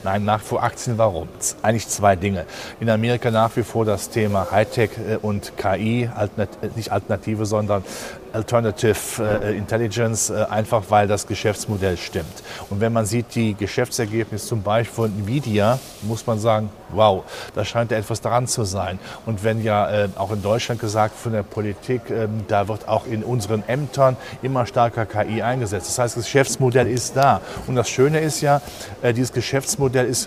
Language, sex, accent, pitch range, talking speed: German, male, German, 105-125 Hz, 160 wpm